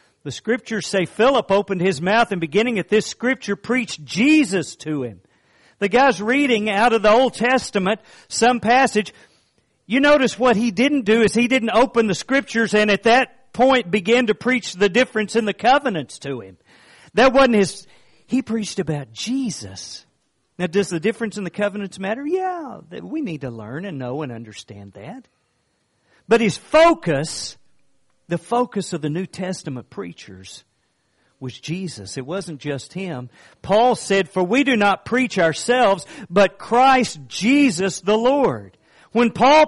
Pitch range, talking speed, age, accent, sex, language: 175-245 Hz, 165 wpm, 50-69, American, male, English